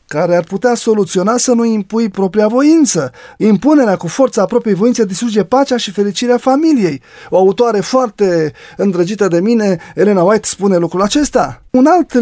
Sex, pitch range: male, 175-240 Hz